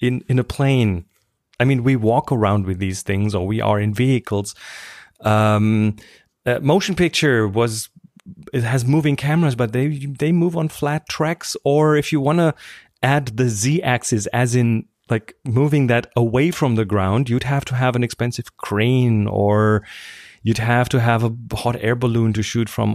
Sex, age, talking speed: male, 30-49, 185 wpm